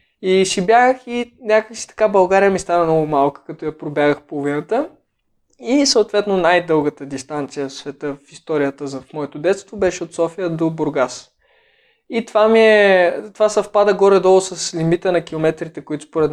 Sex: male